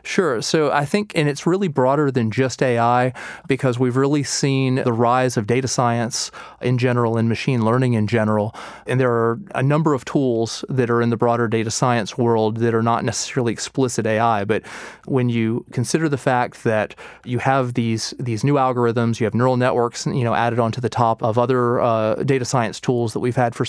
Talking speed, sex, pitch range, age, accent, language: 205 wpm, male, 115-130 Hz, 30-49, American, English